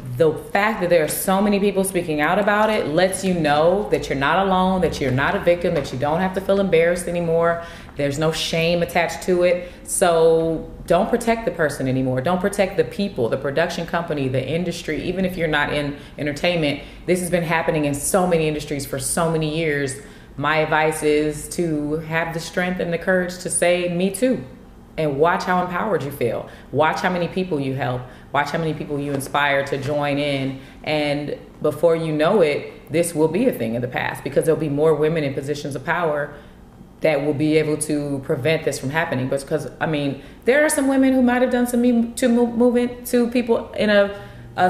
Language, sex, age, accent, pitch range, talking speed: English, female, 30-49, American, 140-180 Hz, 210 wpm